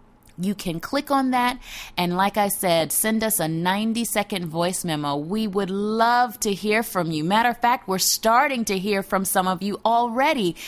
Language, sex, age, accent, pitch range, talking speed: English, female, 30-49, American, 175-245 Hz, 190 wpm